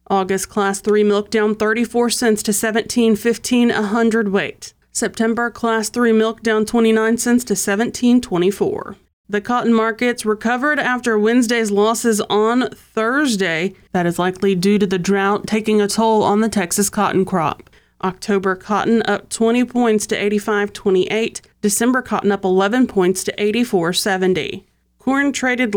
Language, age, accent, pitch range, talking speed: English, 30-49, American, 200-235 Hz, 140 wpm